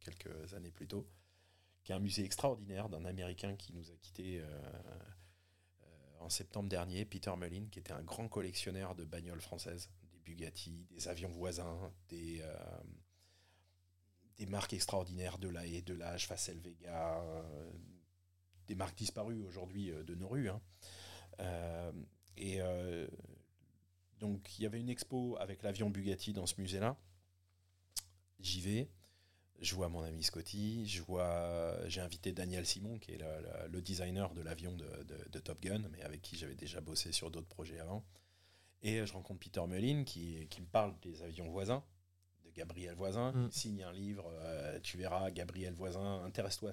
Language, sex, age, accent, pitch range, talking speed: French, male, 40-59, French, 85-100 Hz, 170 wpm